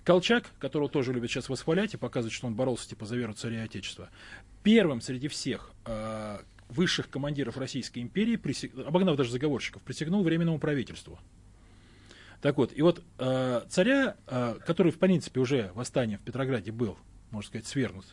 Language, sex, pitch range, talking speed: Russian, male, 105-160 Hz, 160 wpm